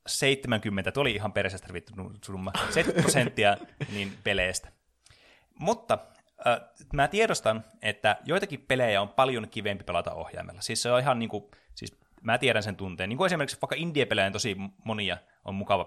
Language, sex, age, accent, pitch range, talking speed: Finnish, male, 20-39, native, 100-135 Hz, 170 wpm